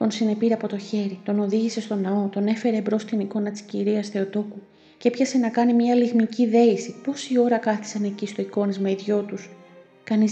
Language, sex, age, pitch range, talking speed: Greek, female, 30-49, 190-240 Hz, 200 wpm